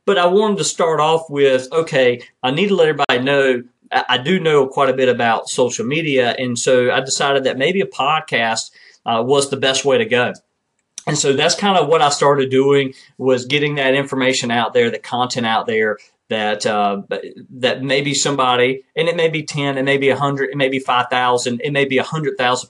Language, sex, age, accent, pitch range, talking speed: English, male, 40-59, American, 125-145 Hz, 210 wpm